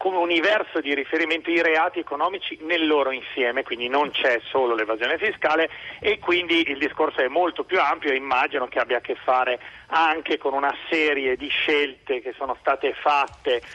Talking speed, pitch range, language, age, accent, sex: 180 wpm, 130-185 Hz, Italian, 40-59, native, male